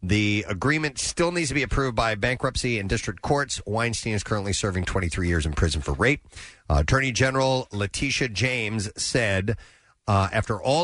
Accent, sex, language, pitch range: American, male, English, 95-130 Hz